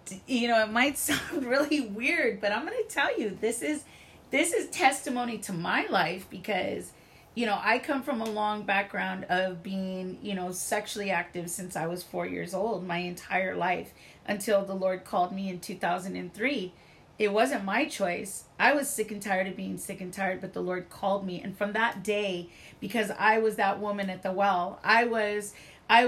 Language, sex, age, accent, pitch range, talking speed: English, female, 30-49, American, 185-220 Hz, 200 wpm